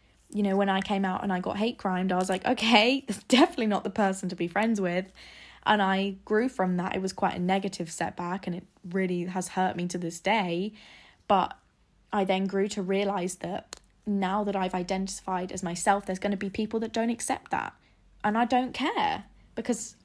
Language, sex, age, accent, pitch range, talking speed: English, female, 10-29, British, 185-210 Hz, 215 wpm